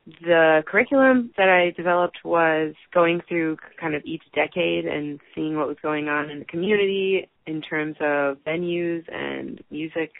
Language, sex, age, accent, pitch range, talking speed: English, female, 20-39, American, 155-180 Hz, 160 wpm